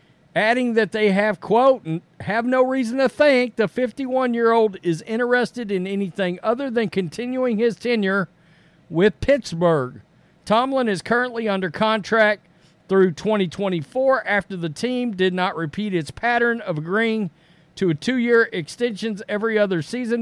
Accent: American